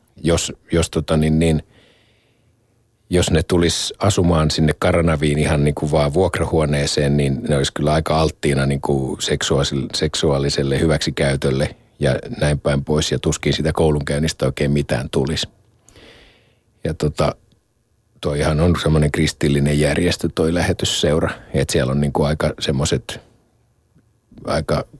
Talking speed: 105 wpm